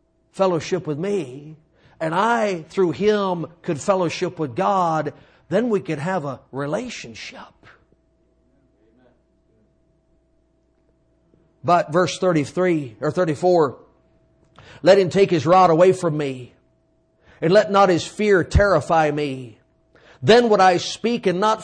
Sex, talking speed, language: male, 120 wpm, English